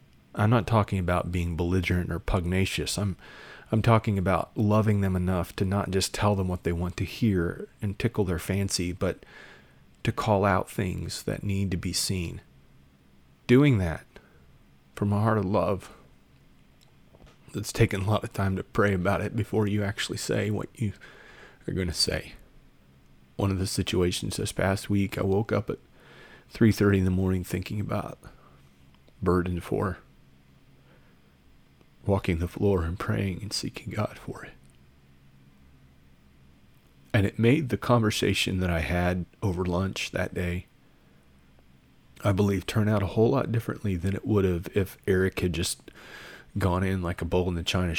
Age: 30-49